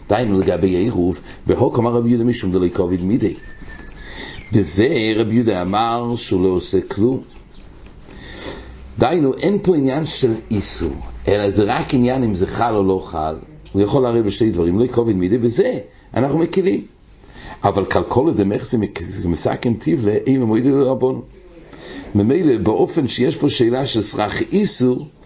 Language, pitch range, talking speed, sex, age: English, 95-130 Hz, 145 wpm, male, 60-79